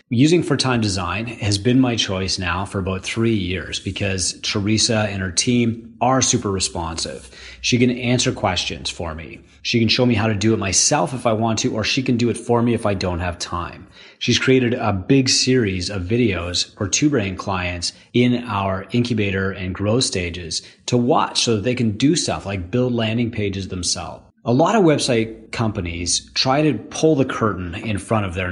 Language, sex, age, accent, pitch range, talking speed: English, male, 30-49, American, 95-125 Hz, 200 wpm